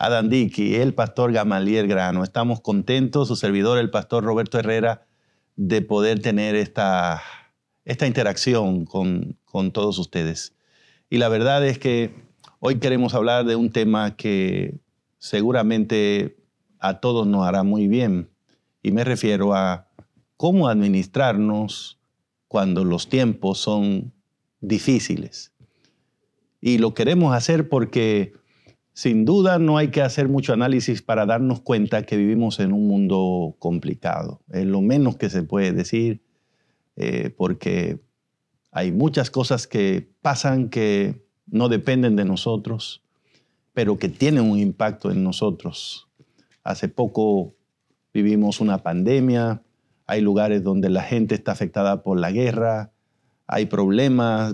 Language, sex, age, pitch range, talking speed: English, male, 50-69, 100-125 Hz, 130 wpm